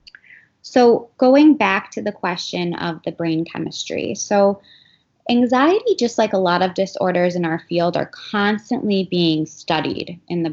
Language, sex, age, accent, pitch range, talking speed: English, female, 20-39, American, 170-210 Hz, 155 wpm